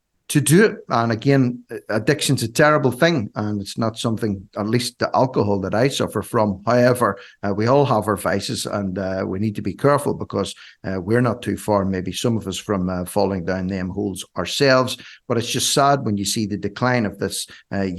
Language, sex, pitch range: English, male, 90-115 Hz